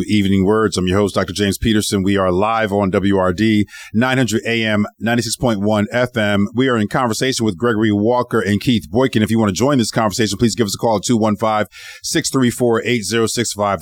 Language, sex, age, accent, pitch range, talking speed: English, male, 40-59, American, 105-130 Hz, 180 wpm